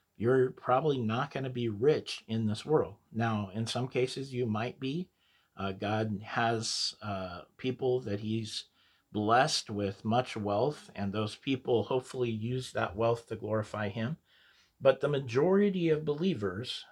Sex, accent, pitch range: male, American, 100-125 Hz